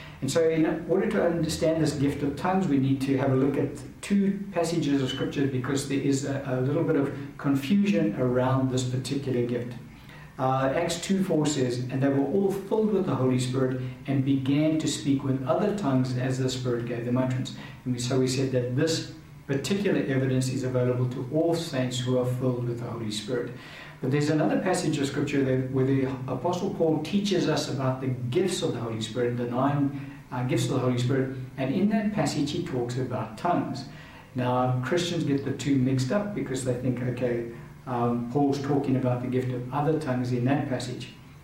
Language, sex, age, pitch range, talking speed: English, male, 60-79, 130-155 Hz, 200 wpm